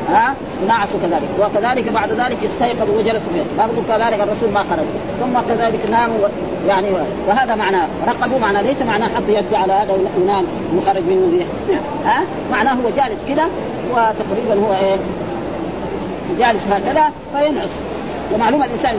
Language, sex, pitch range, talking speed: Arabic, female, 210-295 Hz, 155 wpm